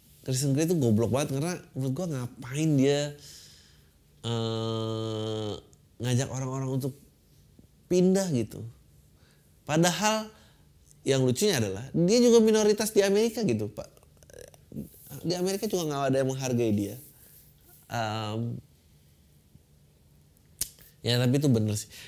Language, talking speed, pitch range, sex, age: Indonesian, 110 wpm, 115-155 Hz, male, 20-39